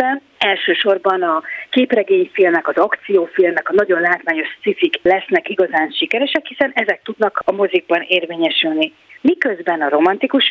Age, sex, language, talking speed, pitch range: 30-49, female, Hungarian, 120 wpm, 185-275 Hz